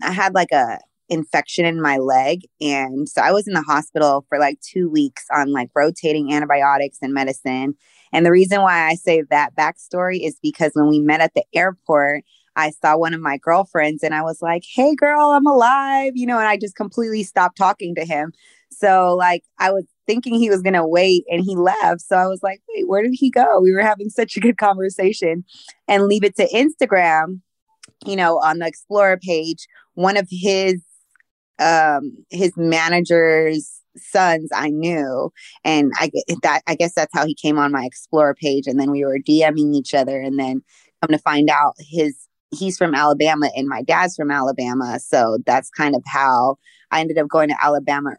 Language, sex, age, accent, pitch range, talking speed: English, female, 20-39, American, 145-190 Hz, 200 wpm